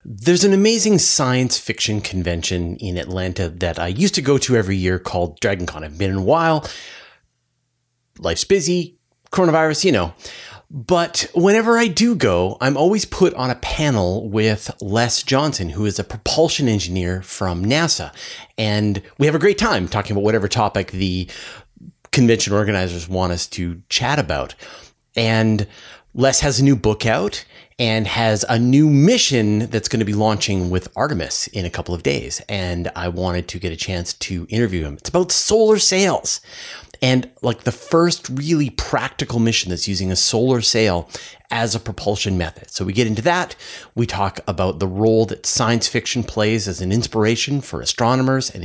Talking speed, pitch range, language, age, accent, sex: 175 wpm, 95-135 Hz, English, 30-49, American, male